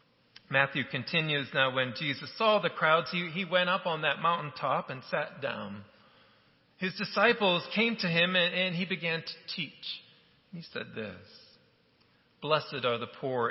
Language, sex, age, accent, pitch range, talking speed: English, male, 40-59, American, 125-180 Hz, 160 wpm